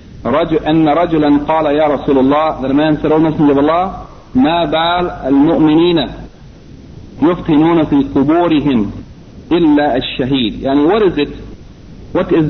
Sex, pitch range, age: male, 135-175 Hz, 50-69